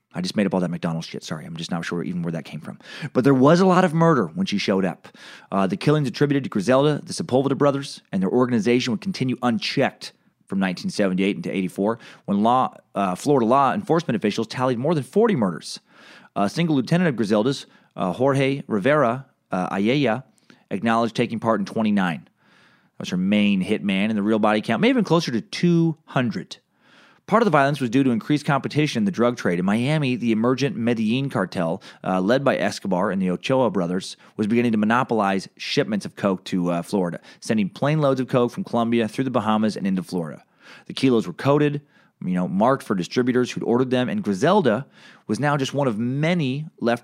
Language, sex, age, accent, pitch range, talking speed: English, male, 30-49, American, 105-150 Hz, 205 wpm